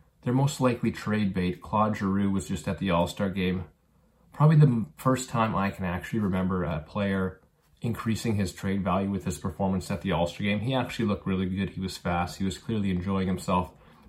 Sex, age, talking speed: male, 30-49, 200 wpm